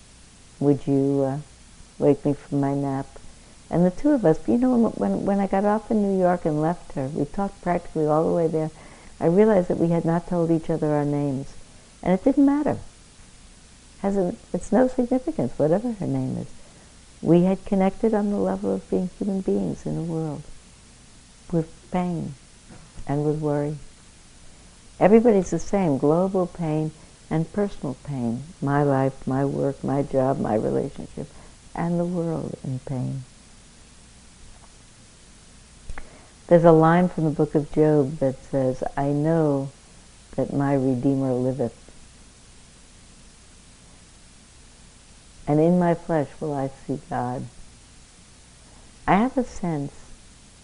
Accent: American